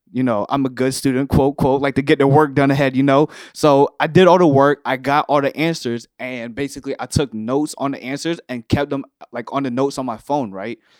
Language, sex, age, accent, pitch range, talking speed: English, male, 20-39, American, 125-150 Hz, 255 wpm